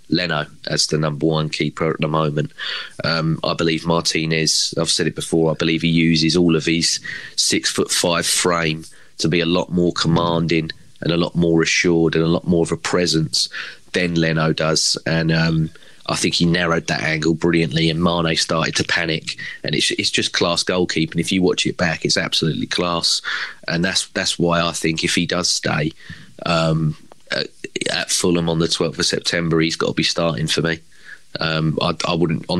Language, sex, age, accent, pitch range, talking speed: English, male, 30-49, British, 80-85 Hz, 200 wpm